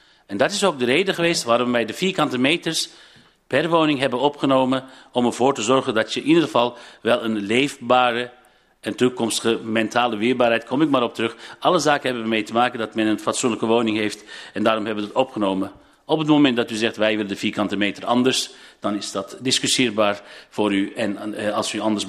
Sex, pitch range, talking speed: male, 110-135 Hz, 210 wpm